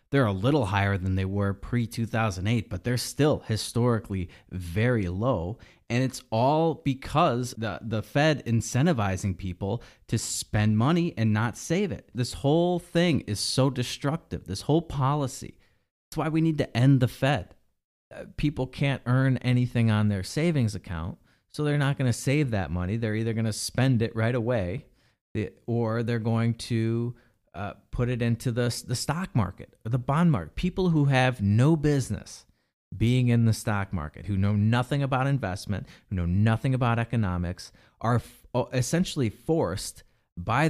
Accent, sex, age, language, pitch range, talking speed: American, male, 30-49, English, 105-135 Hz, 165 wpm